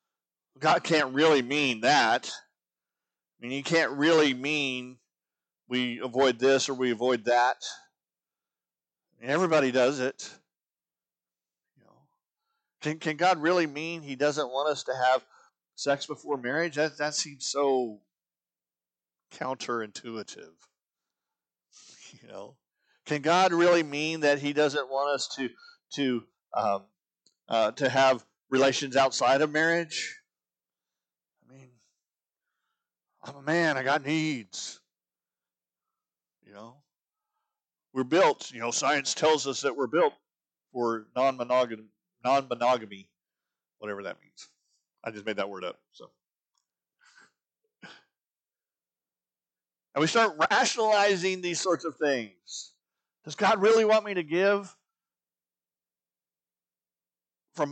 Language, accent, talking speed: English, American, 115 wpm